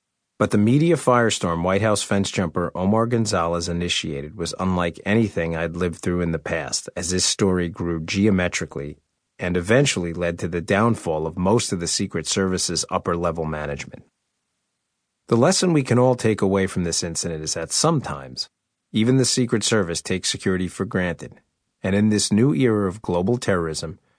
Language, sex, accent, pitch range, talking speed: English, male, American, 85-105 Hz, 170 wpm